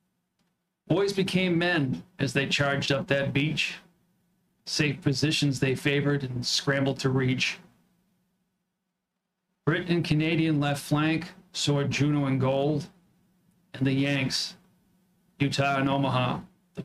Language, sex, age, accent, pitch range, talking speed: English, male, 40-59, American, 140-185 Hz, 120 wpm